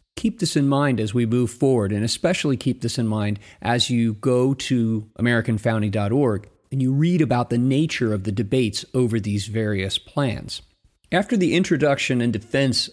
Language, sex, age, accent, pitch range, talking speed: English, male, 40-59, American, 110-140 Hz, 170 wpm